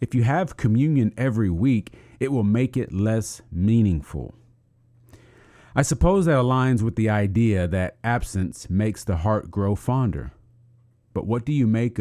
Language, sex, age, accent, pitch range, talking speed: English, male, 40-59, American, 100-125 Hz, 155 wpm